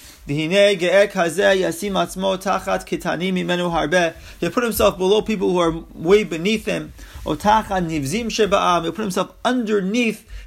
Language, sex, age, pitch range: English, male, 30-49, 165-225 Hz